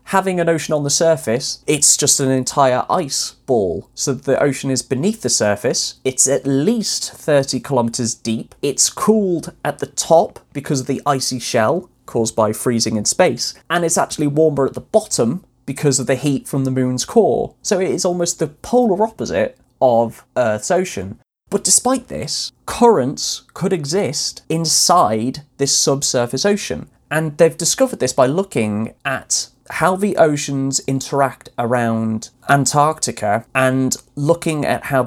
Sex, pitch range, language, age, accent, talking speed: male, 120-165 Hz, English, 20-39, British, 155 wpm